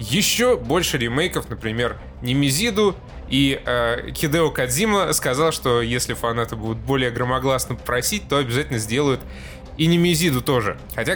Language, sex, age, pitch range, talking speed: Russian, male, 20-39, 115-155 Hz, 130 wpm